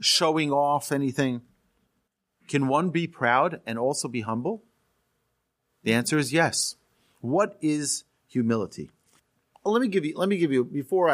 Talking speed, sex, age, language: 150 wpm, male, 40-59, English